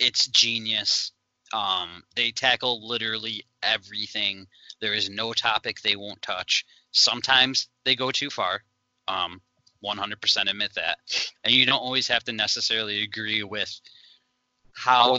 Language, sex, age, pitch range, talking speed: English, male, 20-39, 110-130 Hz, 130 wpm